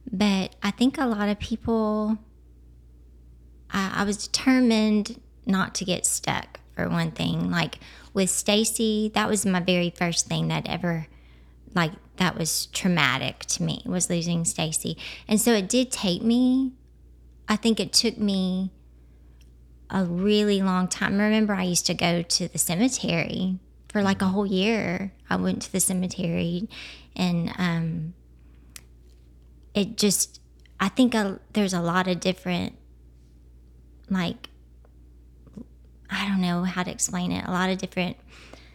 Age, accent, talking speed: 30-49, American, 150 wpm